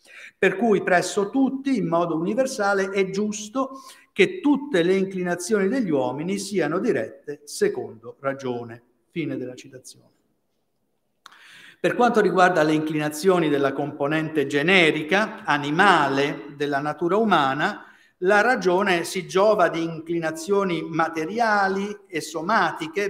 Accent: Italian